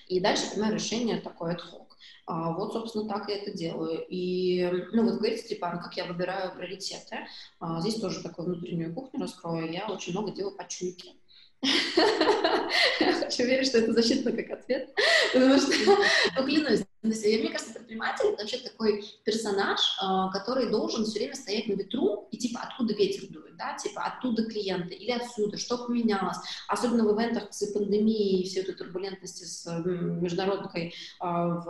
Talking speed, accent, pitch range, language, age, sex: 155 wpm, native, 185-230 Hz, Russian, 20-39, female